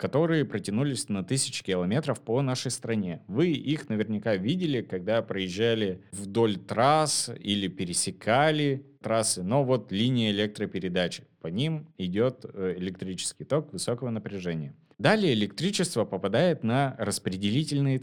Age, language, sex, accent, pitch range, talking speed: 30-49, Russian, male, native, 100-140 Hz, 115 wpm